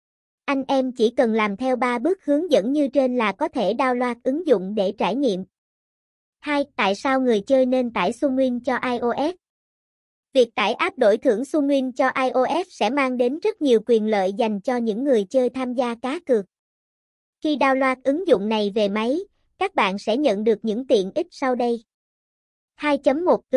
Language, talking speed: Vietnamese, 185 wpm